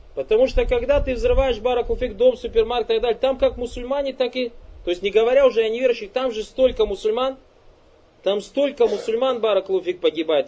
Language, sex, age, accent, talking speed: Russian, male, 20-39, native, 185 wpm